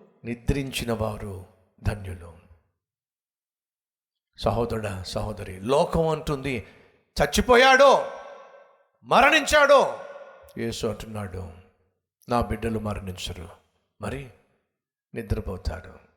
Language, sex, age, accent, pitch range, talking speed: Telugu, male, 60-79, native, 95-135 Hz, 60 wpm